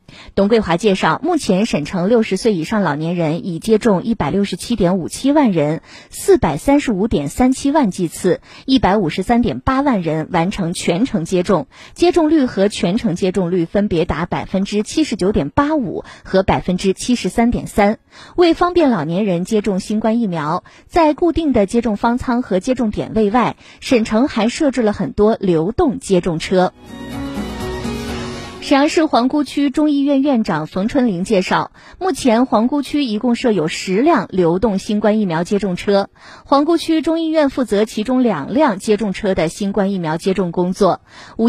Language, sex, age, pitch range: Chinese, female, 20-39, 185-260 Hz